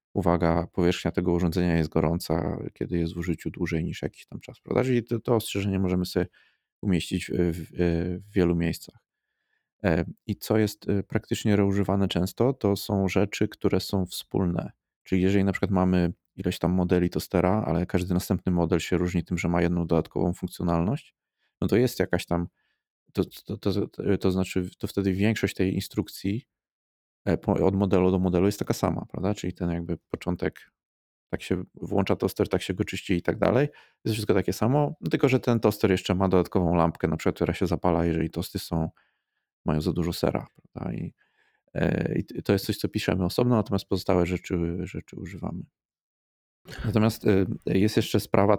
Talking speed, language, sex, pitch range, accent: 175 wpm, Polish, male, 85-100 Hz, native